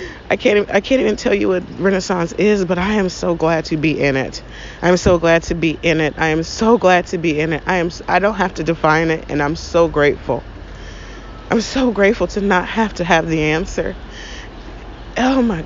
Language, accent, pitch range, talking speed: English, American, 160-210 Hz, 220 wpm